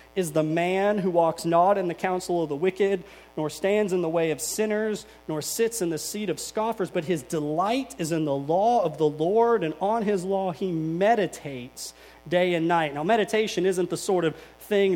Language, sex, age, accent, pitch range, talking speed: English, male, 30-49, American, 160-215 Hz, 210 wpm